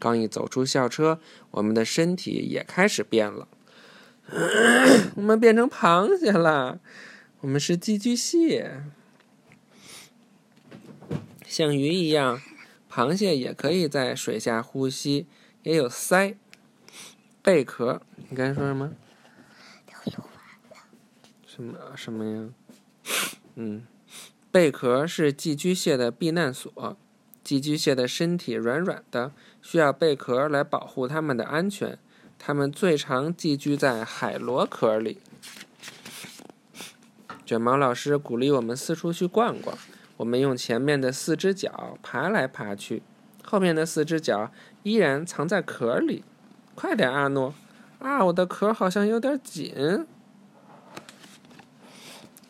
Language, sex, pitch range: Chinese, male, 135-210 Hz